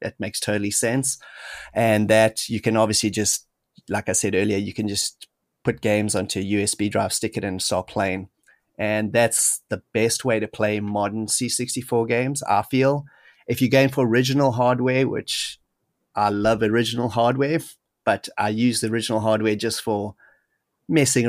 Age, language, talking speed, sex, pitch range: 30-49, English, 170 wpm, male, 105-120 Hz